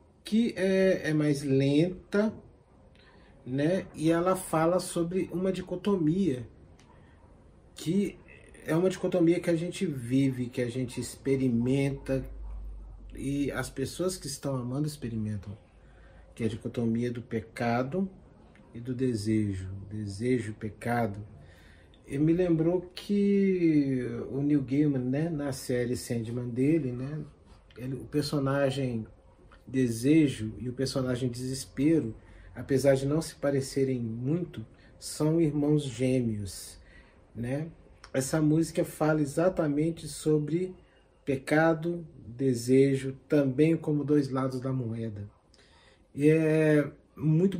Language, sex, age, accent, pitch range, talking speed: Portuguese, male, 40-59, Brazilian, 120-160 Hz, 110 wpm